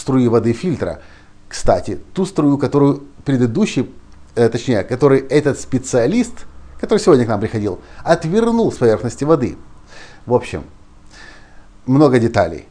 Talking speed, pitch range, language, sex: 125 wpm, 100-145 Hz, Russian, male